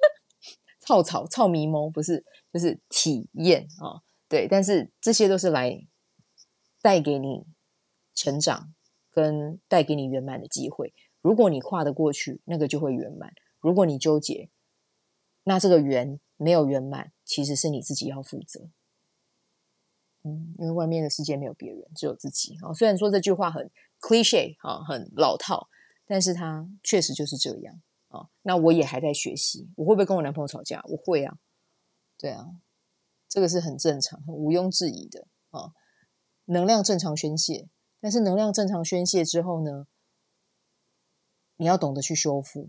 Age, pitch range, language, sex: 20-39, 150-180 Hz, Chinese, female